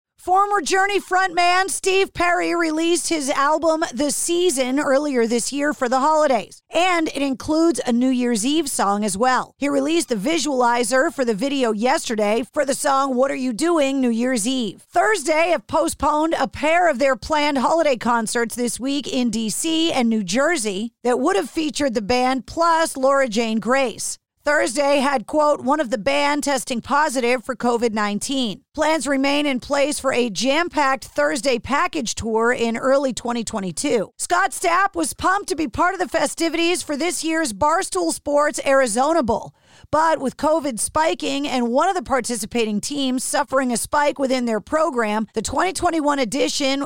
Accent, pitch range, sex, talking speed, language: American, 245-315 Hz, female, 170 wpm, English